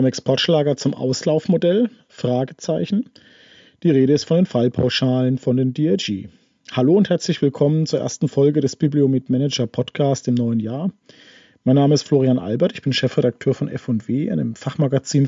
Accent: German